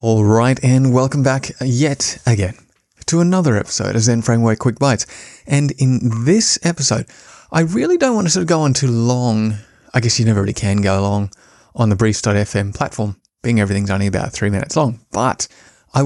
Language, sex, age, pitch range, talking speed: English, male, 20-39, 110-140 Hz, 185 wpm